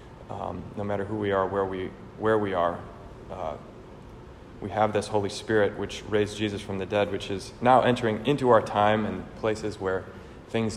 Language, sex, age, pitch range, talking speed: English, male, 30-49, 95-110 Hz, 190 wpm